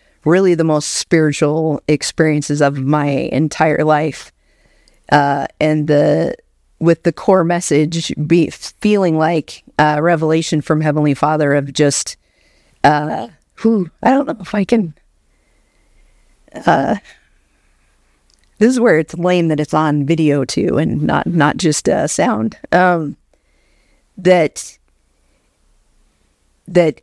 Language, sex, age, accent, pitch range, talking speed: English, female, 40-59, American, 145-180 Hz, 120 wpm